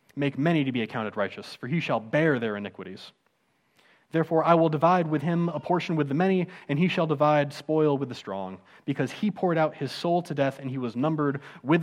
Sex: male